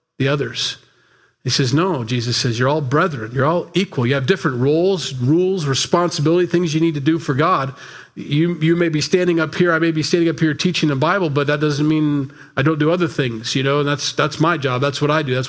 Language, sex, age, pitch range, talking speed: English, male, 40-59, 125-155 Hz, 245 wpm